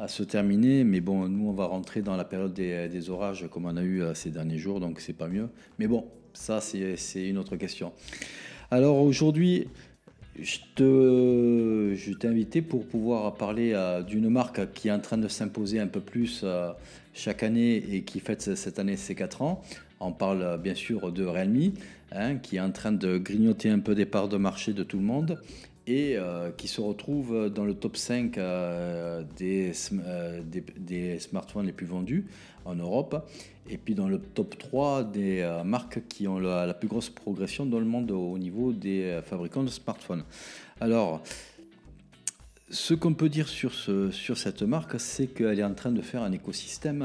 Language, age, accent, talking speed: French, 40-59, French, 180 wpm